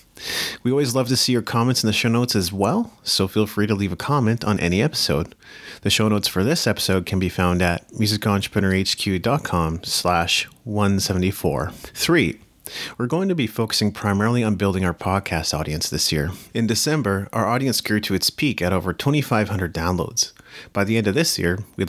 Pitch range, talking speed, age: 90-115 Hz, 185 wpm, 30-49